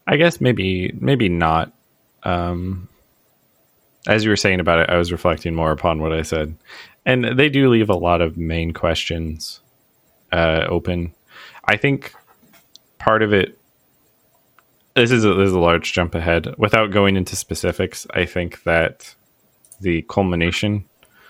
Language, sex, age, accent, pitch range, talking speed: English, male, 20-39, American, 85-105 Hz, 150 wpm